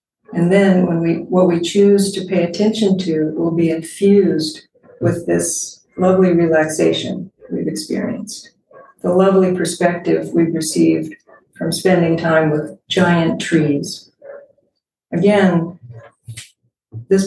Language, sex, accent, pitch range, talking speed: English, female, American, 165-190 Hz, 115 wpm